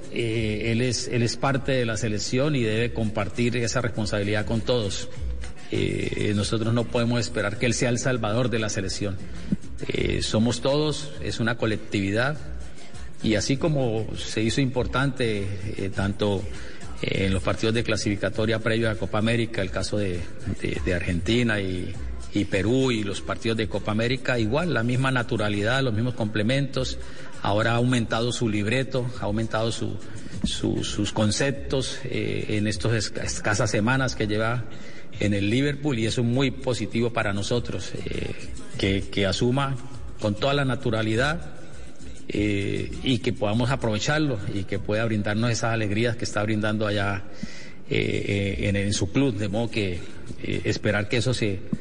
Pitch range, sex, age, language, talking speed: 105-125 Hz, male, 50-69, Spanish, 160 wpm